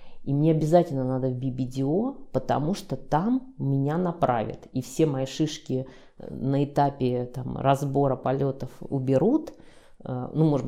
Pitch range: 130-165 Hz